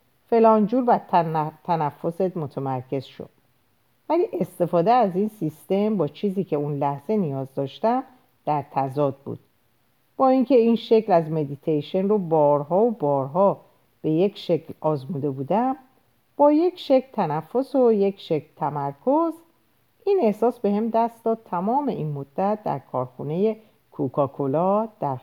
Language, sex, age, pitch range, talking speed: Persian, female, 50-69, 145-220 Hz, 135 wpm